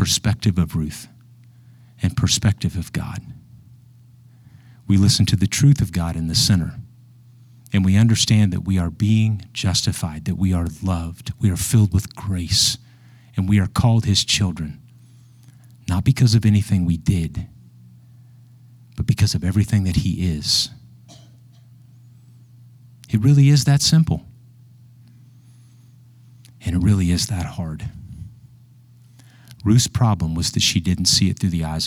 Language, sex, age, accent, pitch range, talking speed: English, male, 50-69, American, 100-125 Hz, 140 wpm